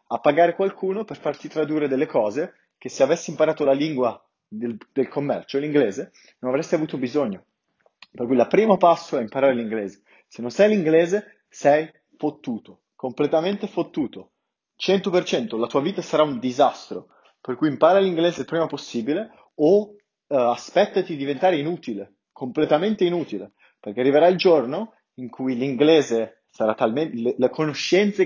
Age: 30-49